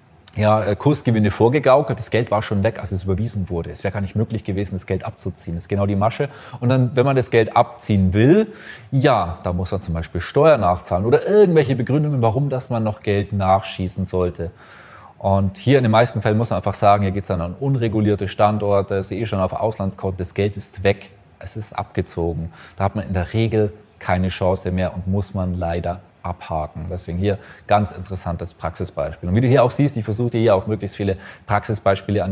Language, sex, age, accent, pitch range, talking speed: German, male, 30-49, German, 95-115 Hz, 210 wpm